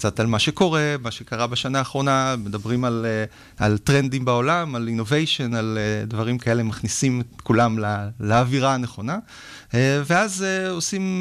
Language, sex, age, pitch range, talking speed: Hebrew, male, 30-49, 115-155 Hz, 140 wpm